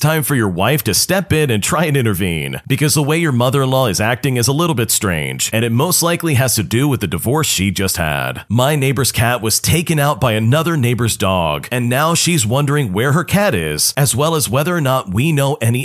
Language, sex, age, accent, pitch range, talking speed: English, male, 40-59, American, 105-150 Hz, 240 wpm